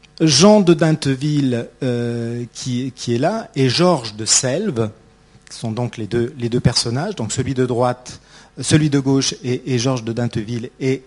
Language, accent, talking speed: French, French, 180 wpm